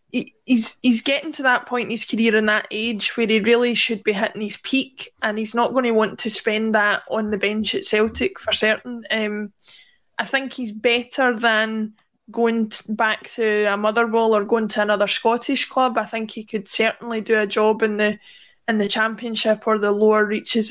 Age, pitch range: 20-39, 215-240 Hz